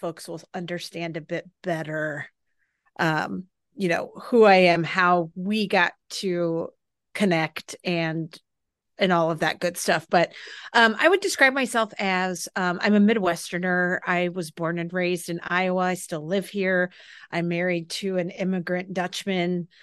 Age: 40-59